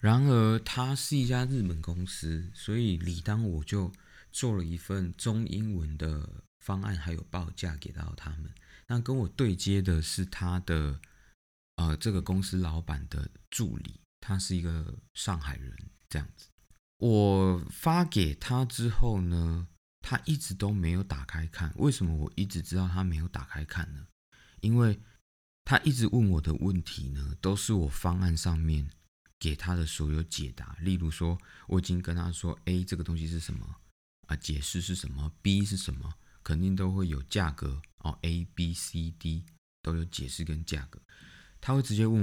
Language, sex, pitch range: Chinese, male, 80-100 Hz